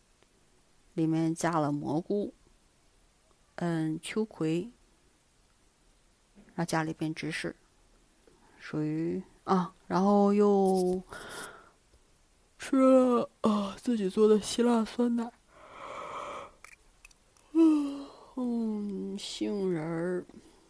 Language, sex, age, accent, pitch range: Chinese, female, 30-49, native, 170-230 Hz